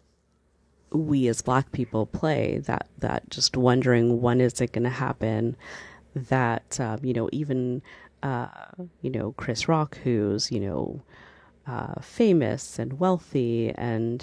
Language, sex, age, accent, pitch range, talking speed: English, female, 40-59, American, 80-130 Hz, 135 wpm